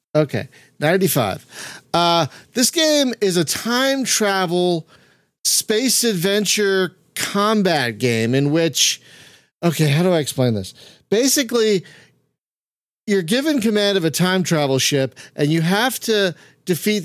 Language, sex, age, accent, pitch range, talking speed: English, male, 40-59, American, 145-195 Hz, 125 wpm